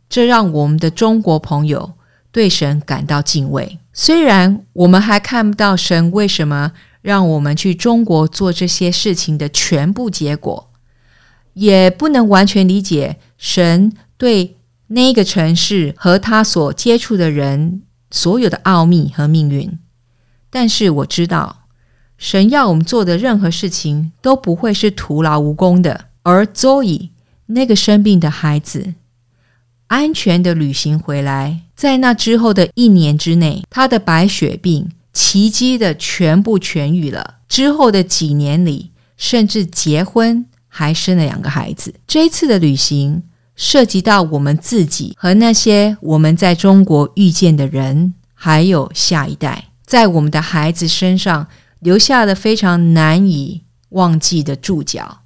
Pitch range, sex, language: 150-205 Hz, female, English